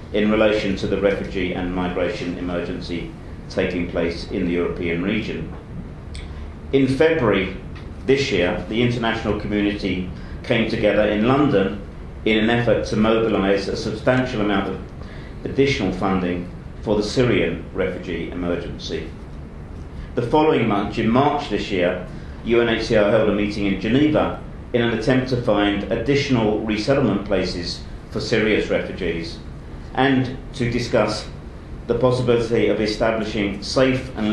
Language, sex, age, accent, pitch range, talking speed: English, male, 50-69, British, 90-120 Hz, 130 wpm